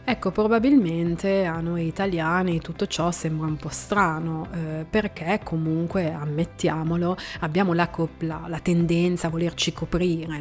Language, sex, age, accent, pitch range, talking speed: Italian, female, 30-49, native, 155-180 Hz, 135 wpm